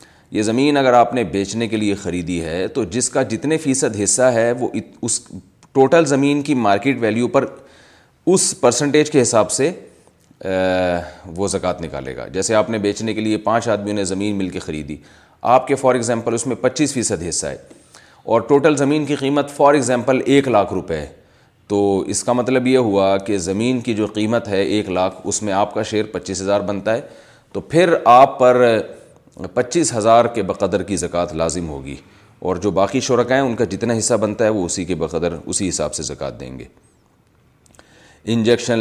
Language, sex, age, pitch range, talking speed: Urdu, male, 30-49, 95-120 Hz, 190 wpm